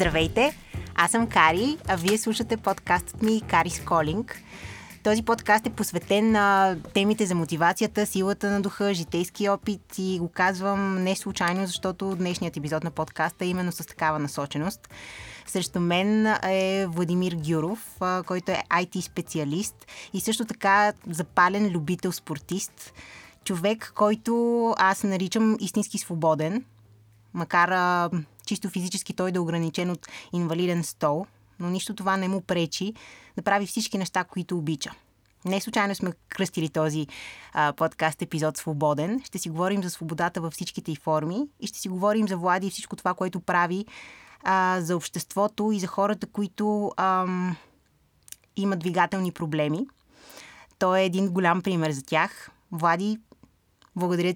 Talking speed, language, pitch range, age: 145 wpm, Bulgarian, 170-200 Hz, 20-39